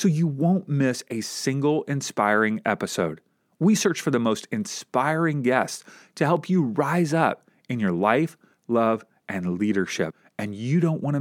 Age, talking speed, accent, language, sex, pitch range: 40-59, 160 wpm, American, English, male, 115-160 Hz